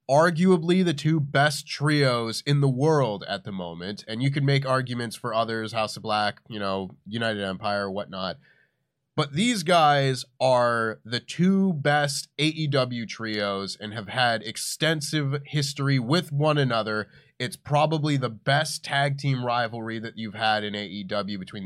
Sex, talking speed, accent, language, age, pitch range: male, 155 wpm, American, English, 20-39, 110-155 Hz